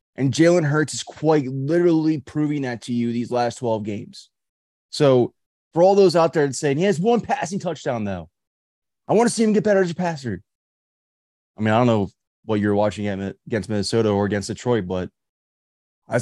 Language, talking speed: English, 190 wpm